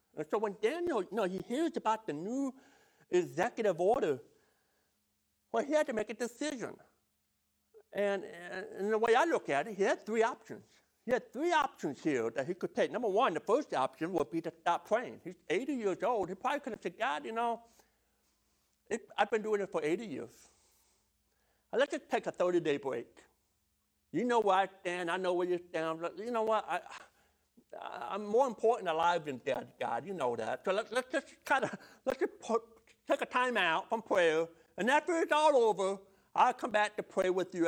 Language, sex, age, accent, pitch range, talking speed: English, male, 60-79, American, 165-235 Hz, 205 wpm